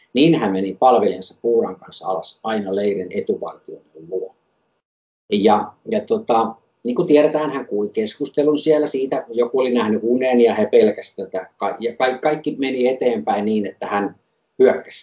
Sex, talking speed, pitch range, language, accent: male, 150 wpm, 105-135 Hz, Finnish, native